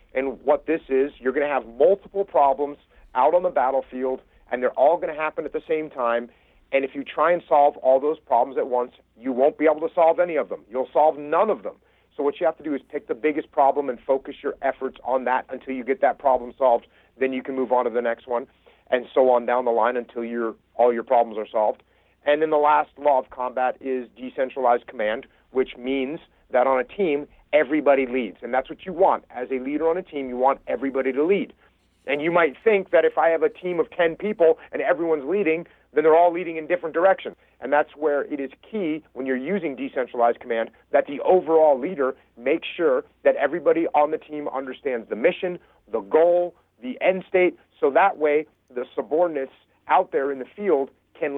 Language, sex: English, male